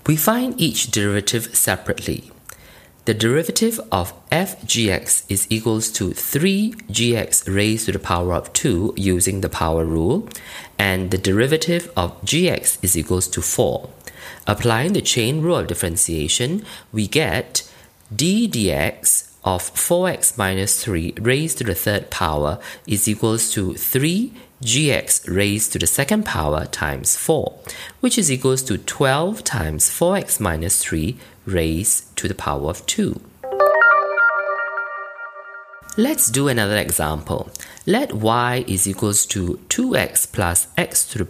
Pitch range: 90-140 Hz